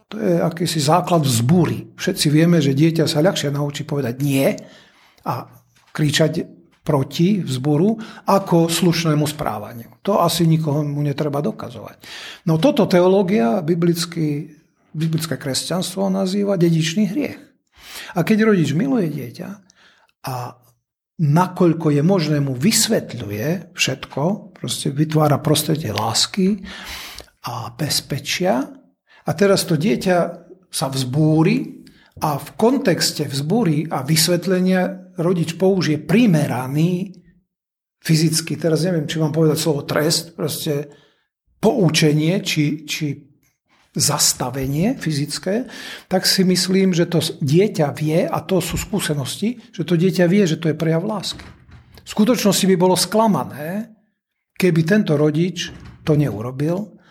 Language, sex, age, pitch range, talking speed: Slovak, male, 50-69, 150-190 Hz, 120 wpm